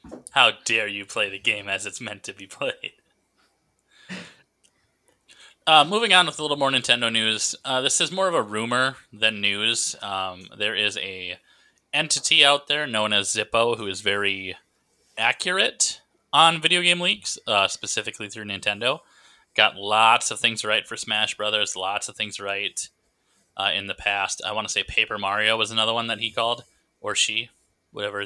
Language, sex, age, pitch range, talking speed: English, male, 20-39, 100-140 Hz, 175 wpm